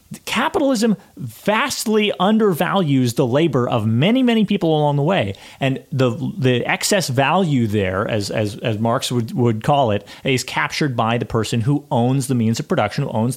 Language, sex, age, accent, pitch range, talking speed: English, male, 30-49, American, 110-135 Hz, 175 wpm